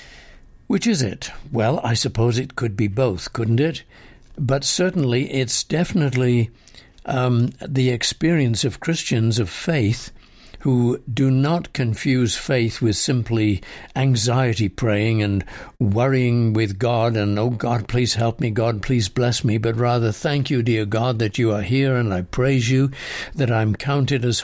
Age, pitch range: 60-79, 115-145 Hz